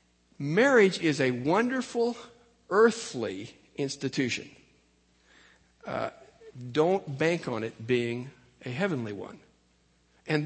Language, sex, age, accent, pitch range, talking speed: English, male, 60-79, American, 120-165 Hz, 90 wpm